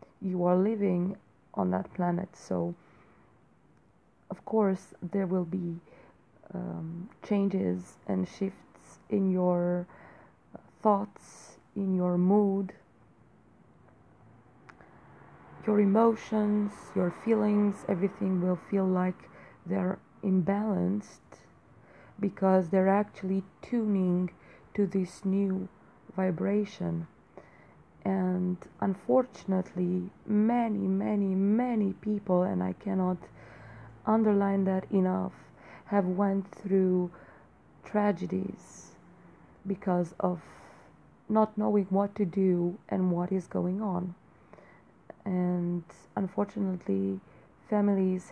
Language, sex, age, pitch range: English, female, 30-49, 180-200 Hz